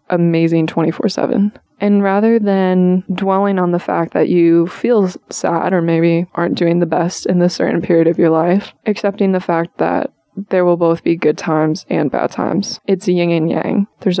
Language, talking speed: English, 185 wpm